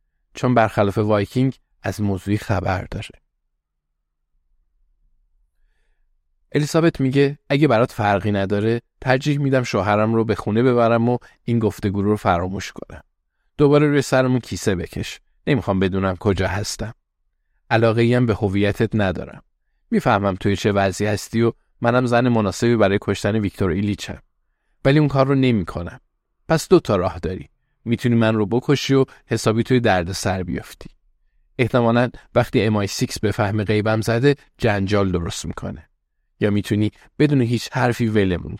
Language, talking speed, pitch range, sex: Persian, 135 wpm, 95-125 Hz, male